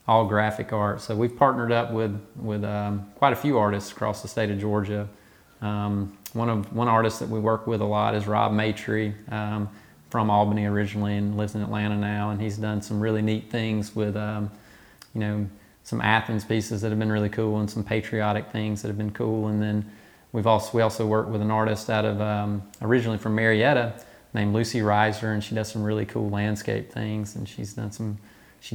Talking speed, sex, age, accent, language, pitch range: 210 wpm, male, 30-49, American, English, 105-110 Hz